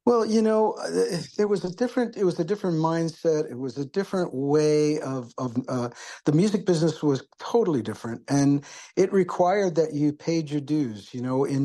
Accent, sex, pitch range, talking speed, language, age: American, male, 125-155 Hz, 190 wpm, English, 60-79